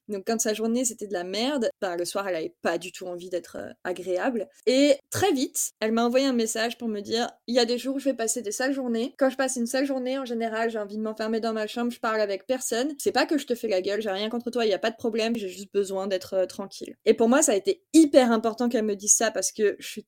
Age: 20-39